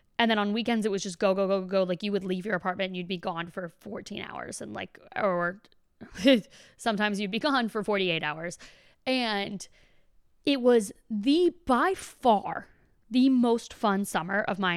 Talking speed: 185 wpm